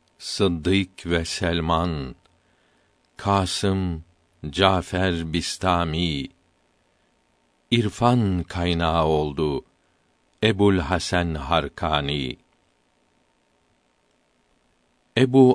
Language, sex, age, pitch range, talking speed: Turkish, male, 50-69, 85-100 Hz, 50 wpm